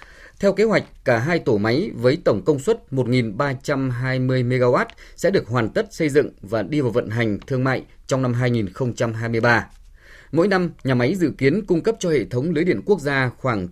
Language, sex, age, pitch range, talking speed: Vietnamese, male, 20-39, 115-155 Hz, 195 wpm